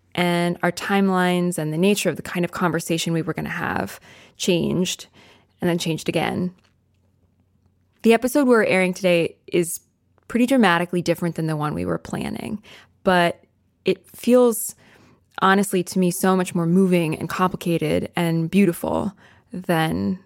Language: English